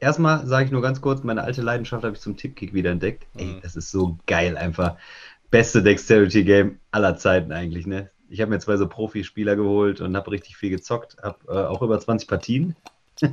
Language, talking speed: German, 195 wpm